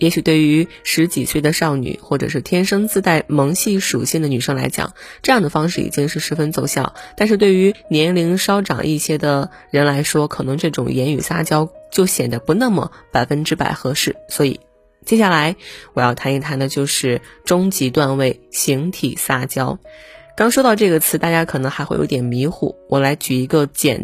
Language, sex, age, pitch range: Chinese, female, 20-39, 135-175 Hz